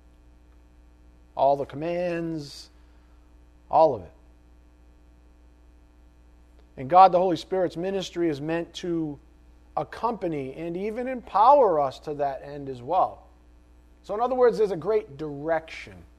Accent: American